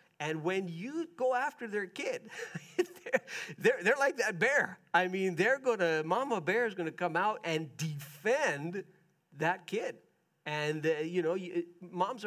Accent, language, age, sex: American, English, 50-69, male